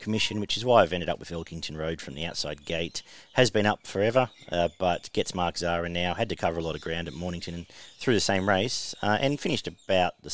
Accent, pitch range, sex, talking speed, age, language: Australian, 85-105 Hz, male, 250 wpm, 40-59, English